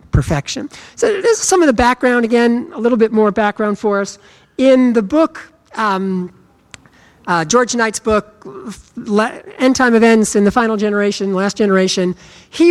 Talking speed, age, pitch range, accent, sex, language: 160 wpm, 50-69, 185-250 Hz, American, male, English